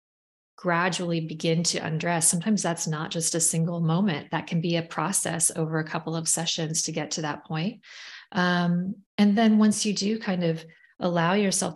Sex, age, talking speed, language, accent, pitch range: female, 30-49, 185 wpm, English, American, 155-175 Hz